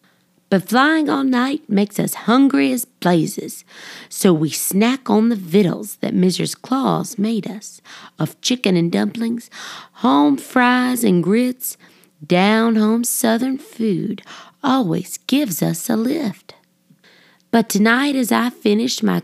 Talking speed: 130 wpm